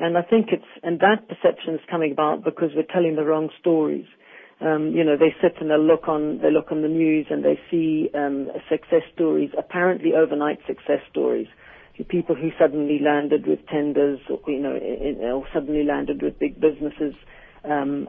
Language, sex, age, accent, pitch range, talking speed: English, female, 50-69, British, 150-165 Hz, 190 wpm